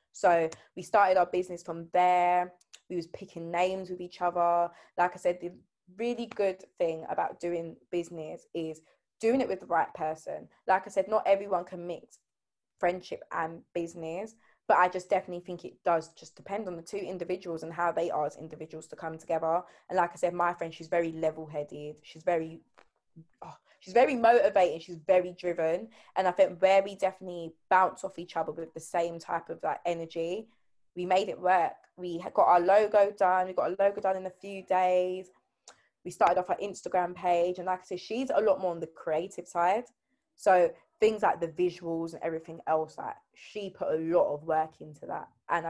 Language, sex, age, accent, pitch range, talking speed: English, female, 20-39, British, 165-190 Hz, 200 wpm